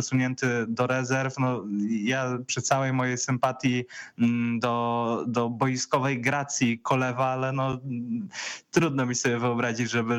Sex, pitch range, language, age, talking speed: male, 120-140 Hz, Polish, 20-39, 125 wpm